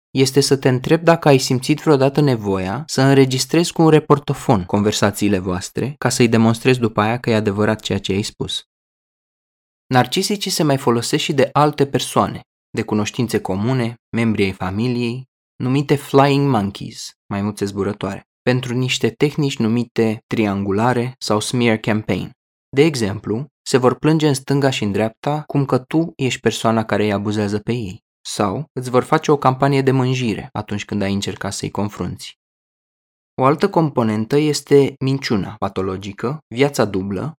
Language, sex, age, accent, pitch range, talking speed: Romanian, male, 20-39, native, 105-140 Hz, 155 wpm